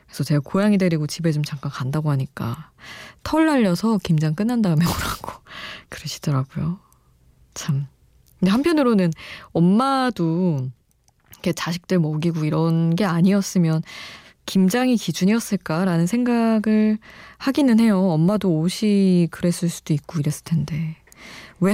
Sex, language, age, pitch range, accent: female, Korean, 20-39, 160-215 Hz, native